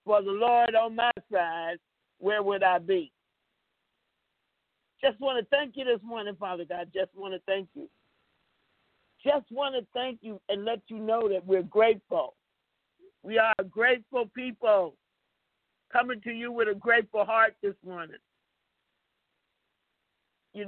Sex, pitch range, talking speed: male, 200-255 Hz, 145 wpm